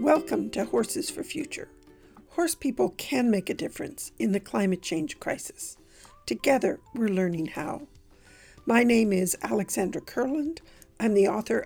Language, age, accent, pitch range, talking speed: English, 50-69, American, 200-300 Hz, 145 wpm